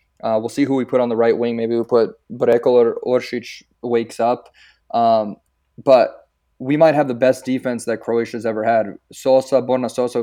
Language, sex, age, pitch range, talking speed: English, male, 20-39, 115-130 Hz, 195 wpm